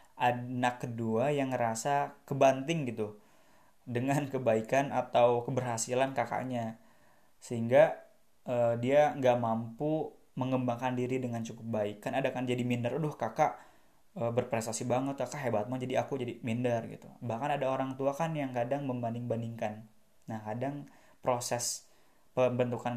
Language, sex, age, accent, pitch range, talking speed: Indonesian, male, 20-39, native, 115-140 Hz, 135 wpm